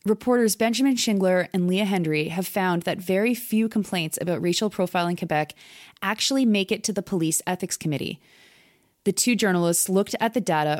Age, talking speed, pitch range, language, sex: 20-39, 170 wpm, 160-210 Hz, English, female